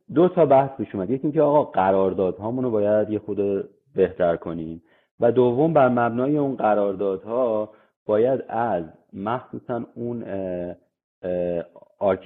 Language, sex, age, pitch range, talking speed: Persian, male, 30-49, 95-125 Hz, 125 wpm